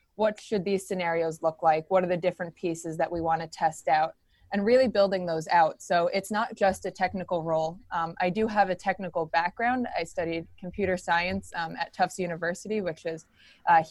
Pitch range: 170-200 Hz